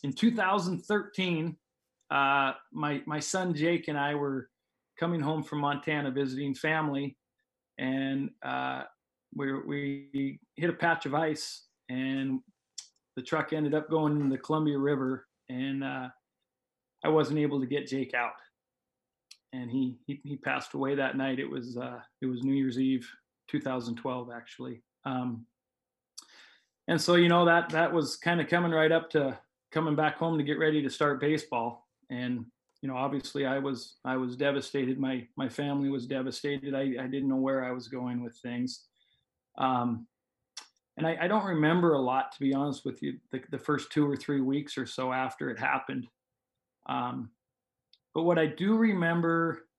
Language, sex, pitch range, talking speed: English, male, 130-160 Hz, 170 wpm